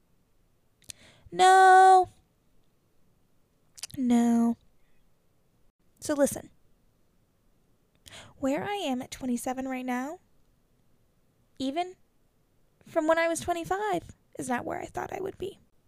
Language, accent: English, American